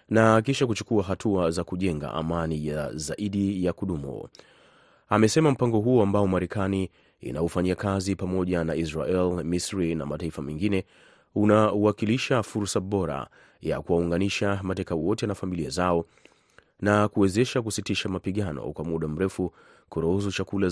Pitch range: 85-105 Hz